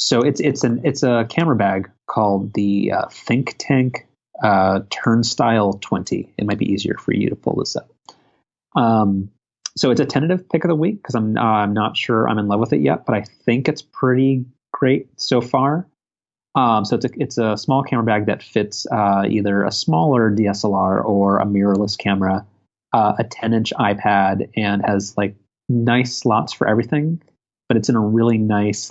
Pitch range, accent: 100-120 Hz, American